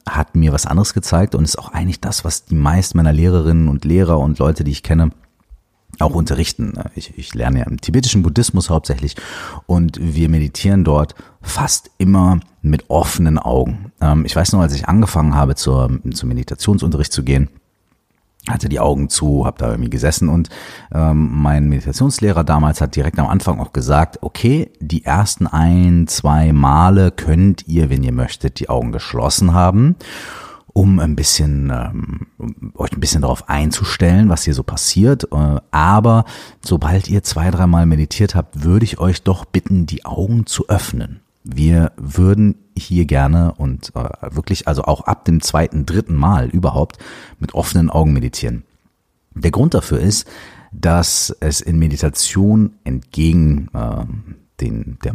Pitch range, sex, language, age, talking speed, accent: 75-95 Hz, male, German, 40-59, 160 wpm, German